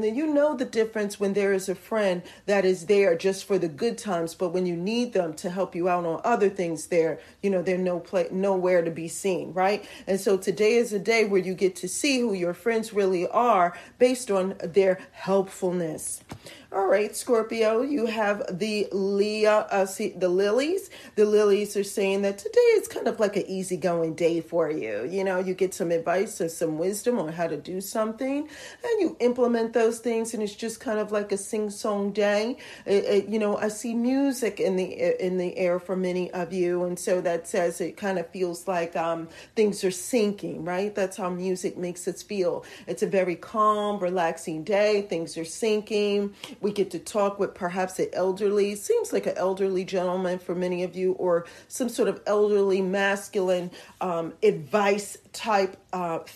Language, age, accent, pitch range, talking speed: English, 40-59, American, 180-210 Hz, 200 wpm